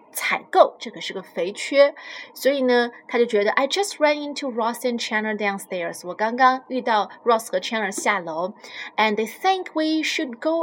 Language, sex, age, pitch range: Chinese, female, 20-39, 200-265 Hz